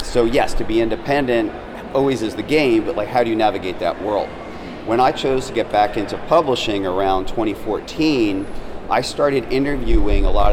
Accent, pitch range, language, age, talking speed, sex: American, 95-120 Hz, English, 40-59, 180 wpm, male